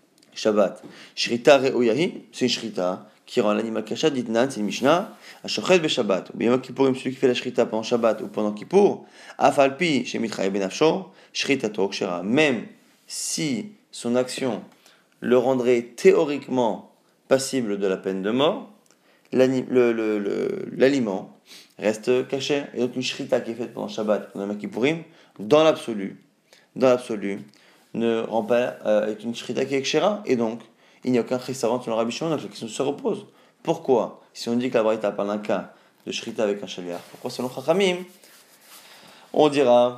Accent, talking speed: French, 185 wpm